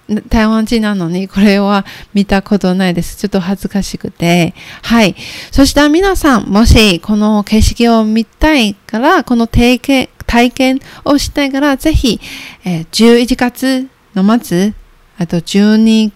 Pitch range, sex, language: 190-240 Hz, female, Japanese